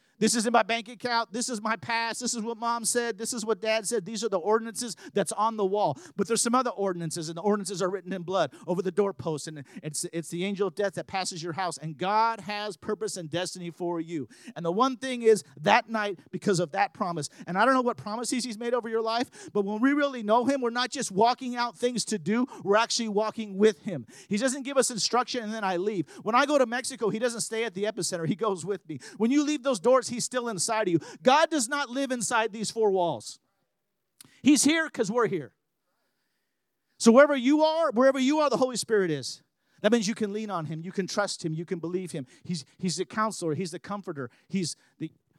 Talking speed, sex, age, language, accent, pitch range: 245 wpm, male, 40-59, English, American, 170-235 Hz